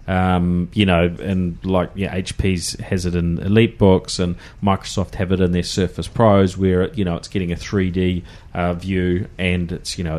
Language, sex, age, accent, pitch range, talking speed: English, male, 30-49, Australian, 90-100 Hz, 205 wpm